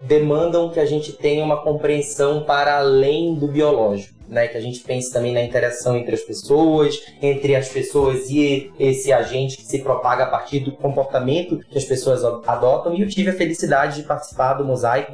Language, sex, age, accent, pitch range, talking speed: Portuguese, male, 20-39, Brazilian, 130-150 Hz, 190 wpm